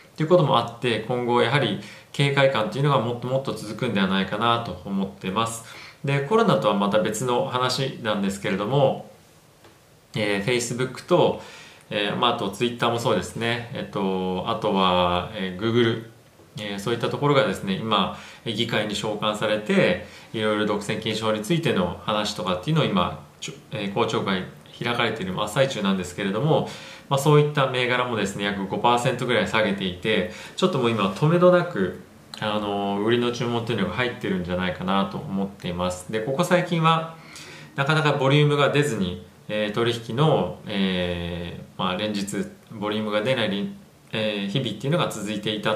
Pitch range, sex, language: 100-135 Hz, male, Japanese